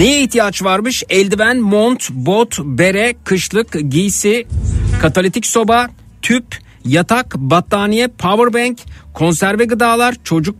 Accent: native